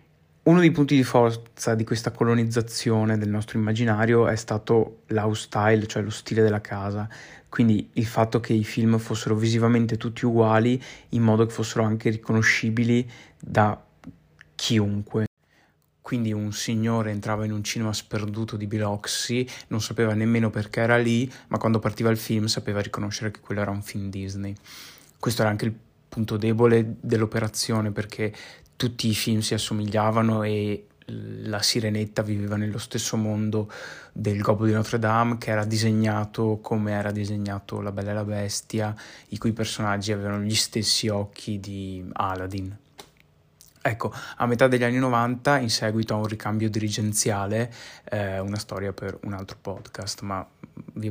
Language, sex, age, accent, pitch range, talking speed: Italian, male, 20-39, native, 105-115 Hz, 155 wpm